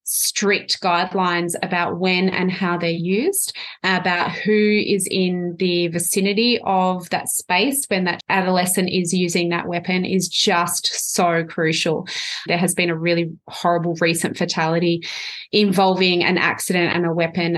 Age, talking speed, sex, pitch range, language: 20-39, 145 wpm, female, 170-205 Hz, English